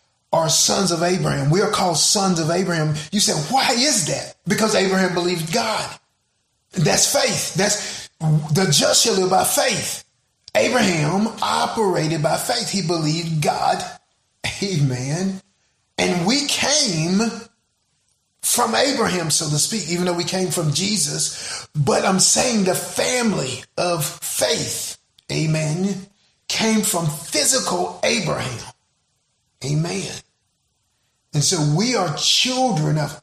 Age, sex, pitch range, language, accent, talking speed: 30-49, male, 155-195 Hz, English, American, 125 wpm